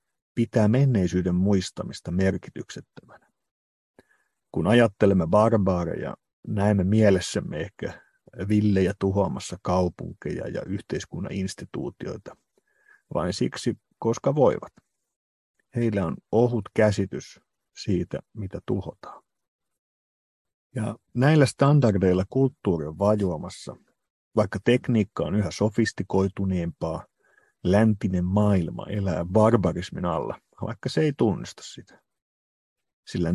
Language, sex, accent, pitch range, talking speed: Finnish, male, native, 95-115 Hz, 90 wpm